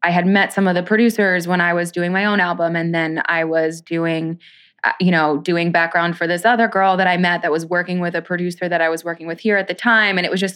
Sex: female